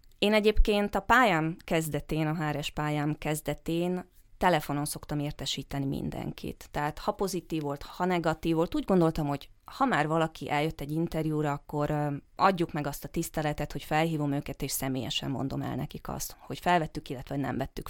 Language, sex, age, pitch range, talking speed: Hungarian, female, 20-39, 150-190 Hz, 165 wpm